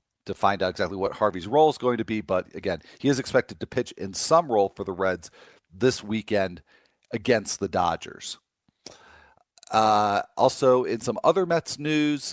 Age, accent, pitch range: 40-59, American, 100-130 Hz